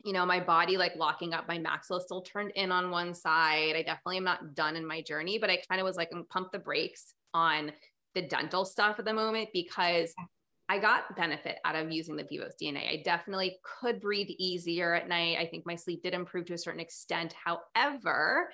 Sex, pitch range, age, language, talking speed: female, 165-200 Hz, 20-39, English, 215 wpm